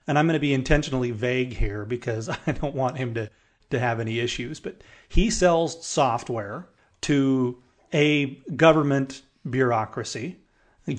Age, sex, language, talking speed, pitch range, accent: 30-49, male, English, 145 wpm, 125-160 Hz, American